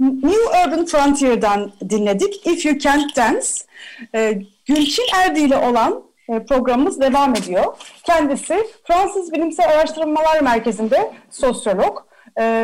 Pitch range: 220-315 Hz